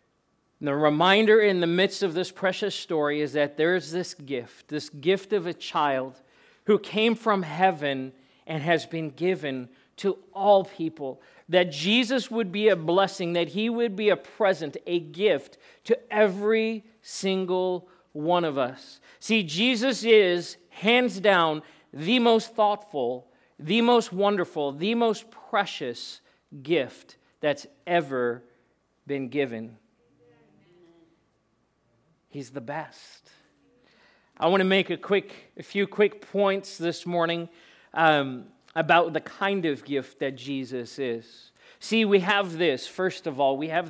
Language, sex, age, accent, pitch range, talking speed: English, male, 40-59, American, 145-195 Hz, 140 wpm